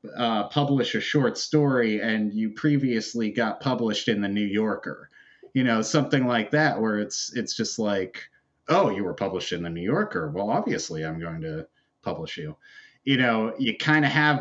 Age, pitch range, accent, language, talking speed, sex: 30-49, 110-150 Hz, American, English, 185 wpm, male